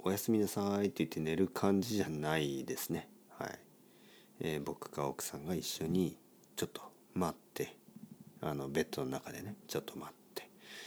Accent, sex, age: native, male, 50-69